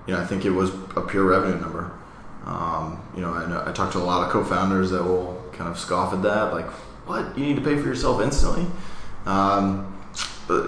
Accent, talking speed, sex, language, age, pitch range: American, 220 wpm, male, English, 20-39, 90-100 Hz